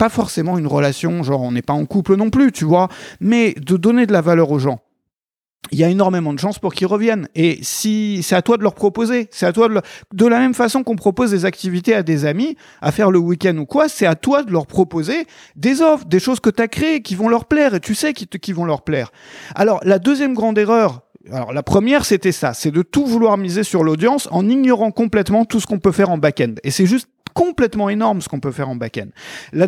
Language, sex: French, male